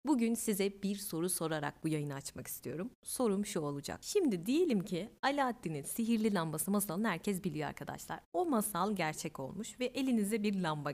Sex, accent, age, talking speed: female, native, 30-49, 165 wpm